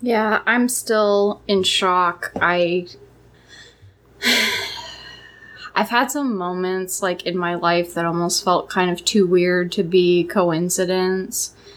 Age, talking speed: 10-29, 120 wpm